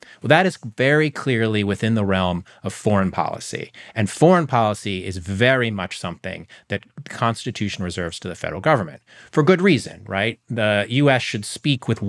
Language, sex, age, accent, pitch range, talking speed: English, male, 30-49, American, 100-135 Hz, 175 wpm